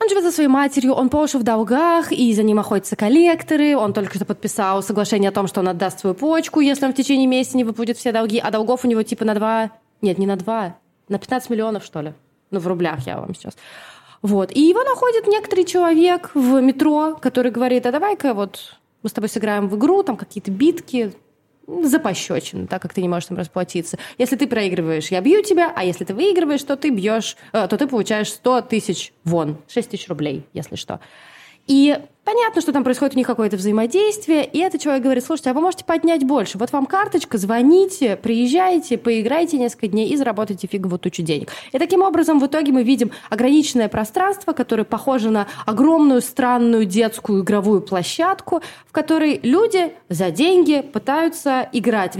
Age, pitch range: 20-39, 205-295 Hz